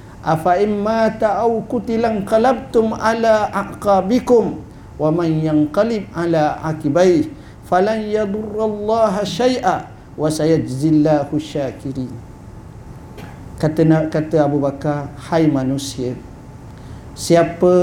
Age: 50-69